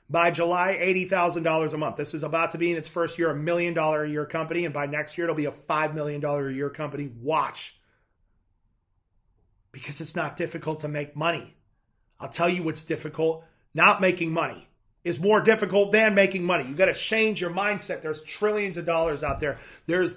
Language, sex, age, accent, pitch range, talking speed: English, male, 30-49, American, 155-180 Hz, 185 wpm